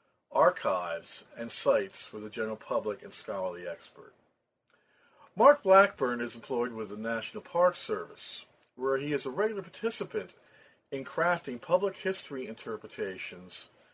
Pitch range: 115-180 Hz